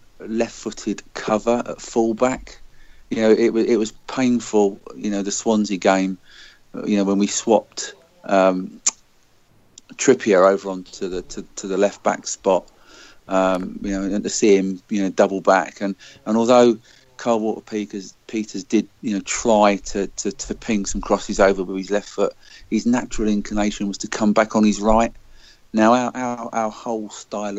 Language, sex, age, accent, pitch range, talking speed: English, male, 40-59, British, 95-110 Hz, 180 wpm